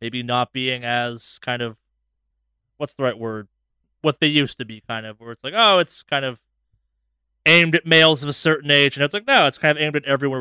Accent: American